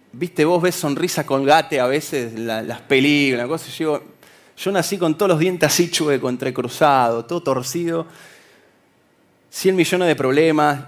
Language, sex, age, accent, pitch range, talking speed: Spanish, male, 20-39, Argentinian, 130-175 Hz, 150 wpm